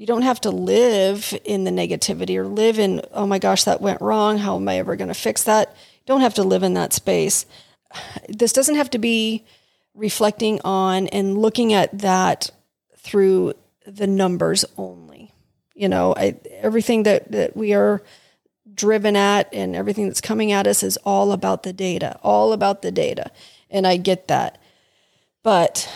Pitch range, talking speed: 185-220 Hz, 180 wpm